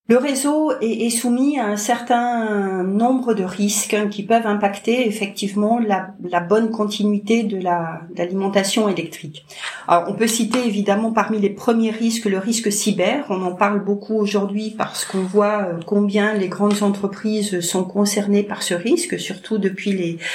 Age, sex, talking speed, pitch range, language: 40-59, female, 160 wpm, 180-215 Hz, French